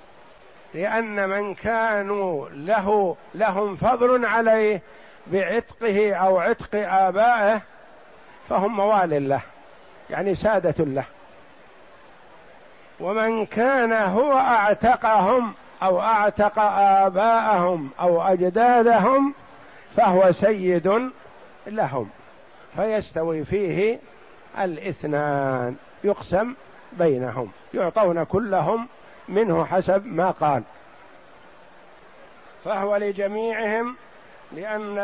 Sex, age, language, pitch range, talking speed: male, 60-79, Arabic, 185-220 Hz, 75 wpm